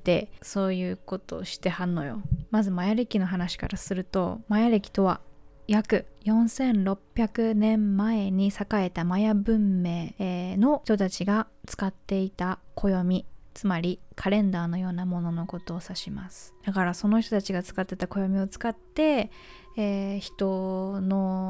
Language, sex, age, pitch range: Japanese, female, 20-39, 185-215 Hz